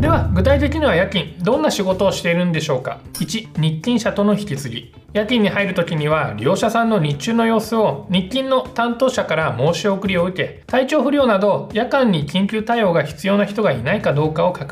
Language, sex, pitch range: Japanese, male, 160-225 Hz